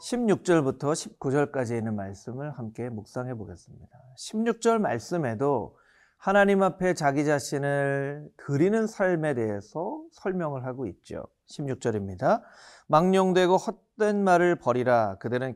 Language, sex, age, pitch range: Korean, male, 40-59, 125-200 Hz